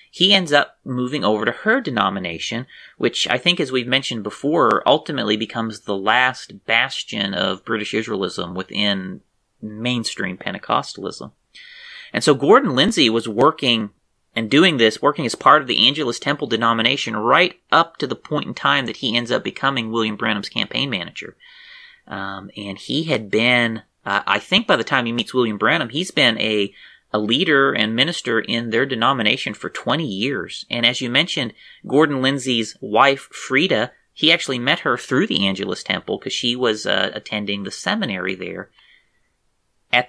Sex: male